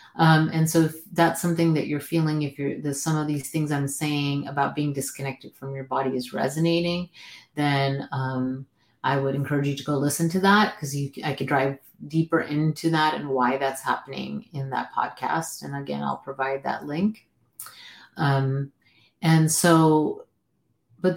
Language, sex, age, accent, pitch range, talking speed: English, female, 30-49, American, 135-160 Hz, 175 wpm